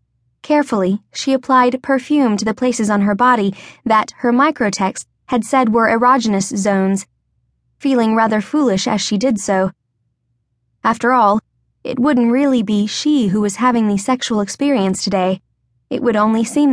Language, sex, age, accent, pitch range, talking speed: English, female, 20-39, American, 190-255 Hz, 155 wpm